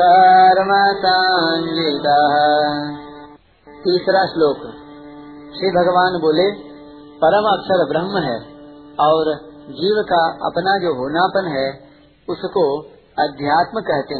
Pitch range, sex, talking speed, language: 145-180 Hz, male, 80 wpm, Hindi